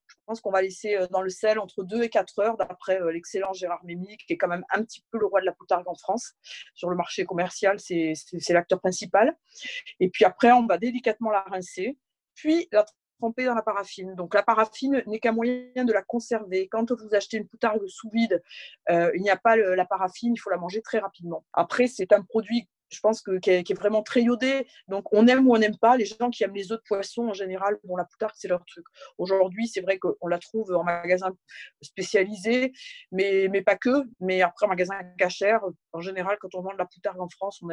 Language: French